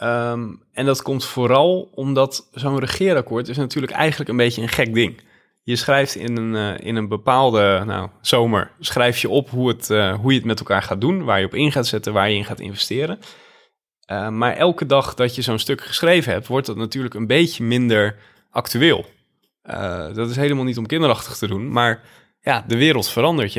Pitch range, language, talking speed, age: 110-135 Hz, Dutch, 205 wpm, 20-39